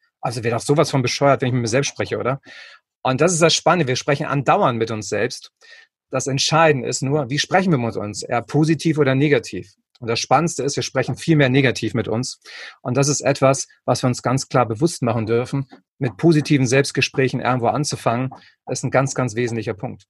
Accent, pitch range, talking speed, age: German, 120-150 Hz, 210 wpm, 30-49